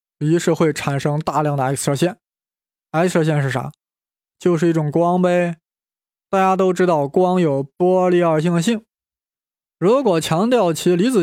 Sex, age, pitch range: male, 20-39, 150-190 Hz